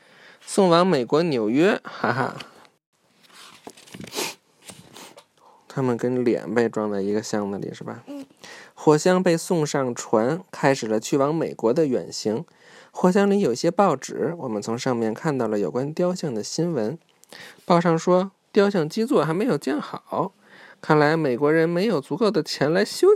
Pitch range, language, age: 135-210 Hz, Chinese, 20-39